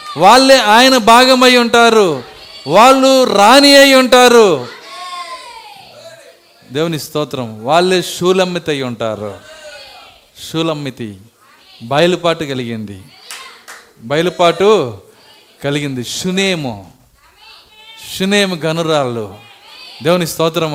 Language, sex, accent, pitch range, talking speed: Telugu, male, native, 155-245 Hz, 70 wpm